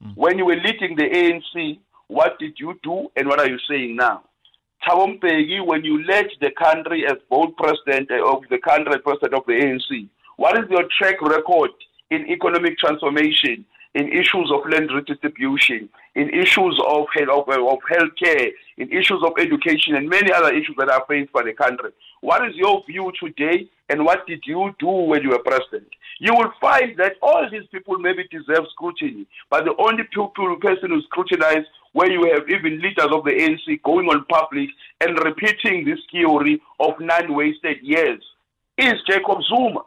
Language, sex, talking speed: English, male, 175 wpm